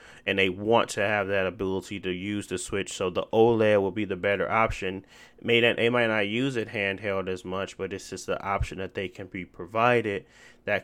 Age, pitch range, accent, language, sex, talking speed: 20-39, 95-115 Hz, American, English, male, 220 wpm